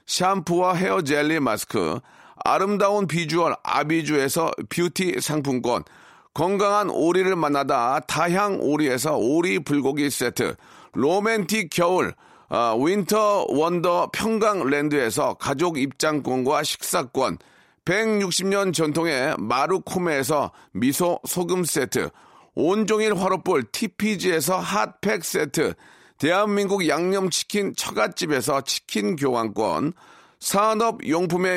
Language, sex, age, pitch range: Korean, male, 40-59, 160-205 Hz